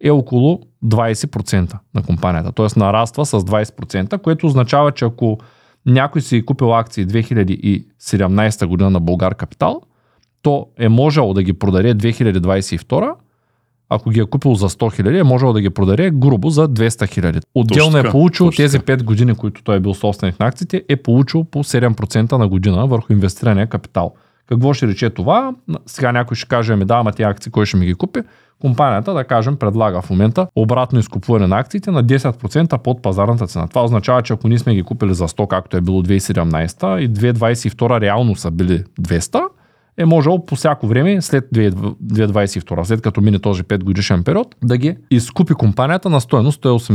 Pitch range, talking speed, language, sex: 100-140 Hz, 180 wpm, Bulgarian, male